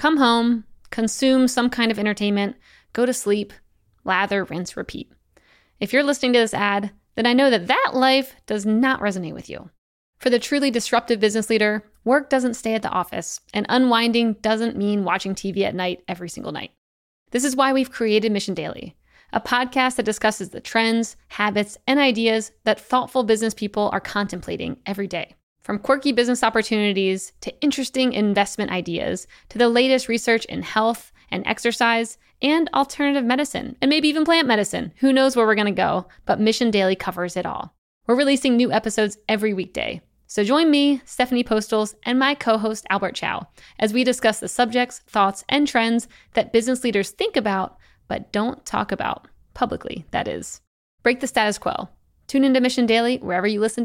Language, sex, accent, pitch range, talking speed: English, female, American, 210-255 Hz, 180 wpm